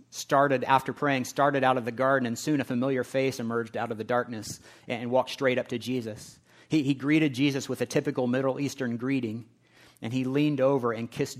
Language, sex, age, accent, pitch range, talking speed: English, male, 40-59, American, 110-140 Hz, 210 wpm